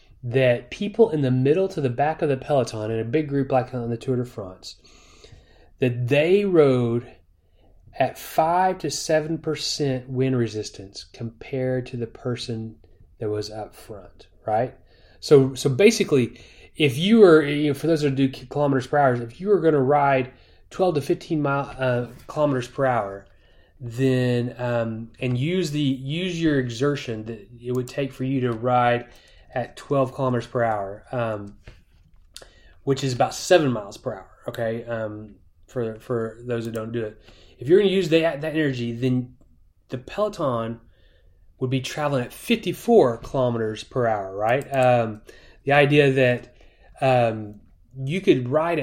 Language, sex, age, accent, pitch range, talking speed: English, male, 30-49, American, 115-155 Hz, 165 wpm